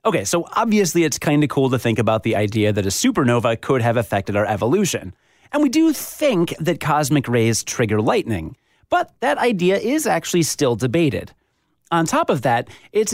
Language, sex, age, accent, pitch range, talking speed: English, male, 30-49, American, 120-175 Hz, 185 wpm